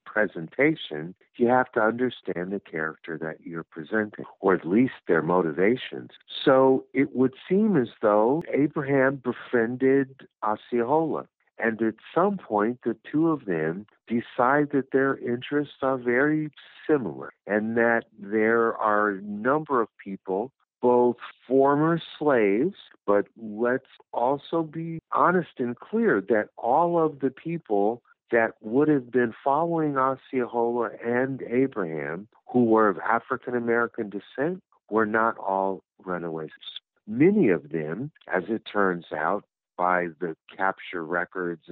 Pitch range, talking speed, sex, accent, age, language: 105-145 Hz, 130 wpm, male, American, 50-69, English